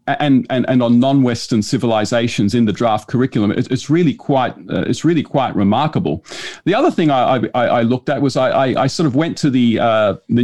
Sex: male